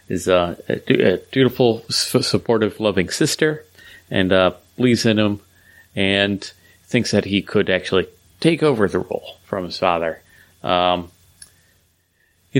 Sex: male